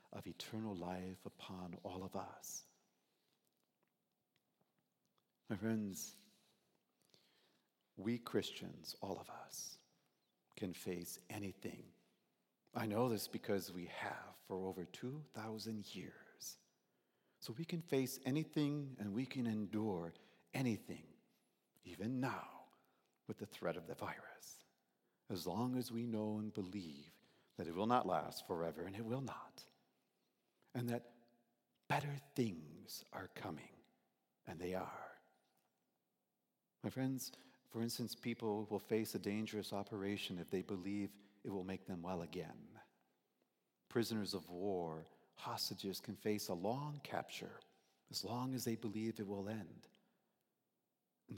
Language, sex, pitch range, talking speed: English, male, 95-115 Hz, 125 wpm